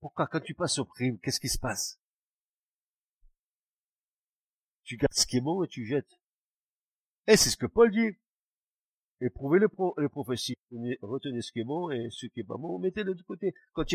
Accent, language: French, French